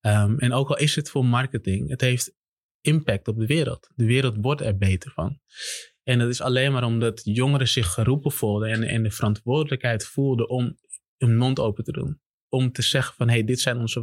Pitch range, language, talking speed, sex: 110-130 Hz, Dutch, 210 wpm, male